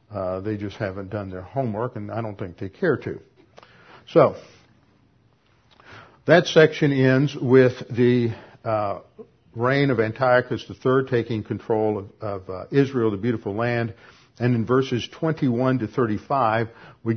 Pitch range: 110-130 Hz